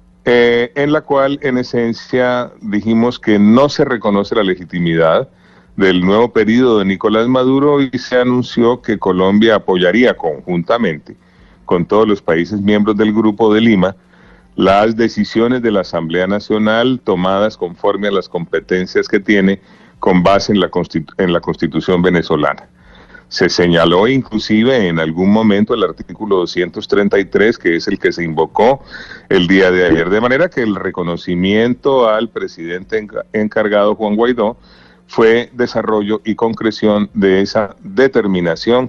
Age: 40-59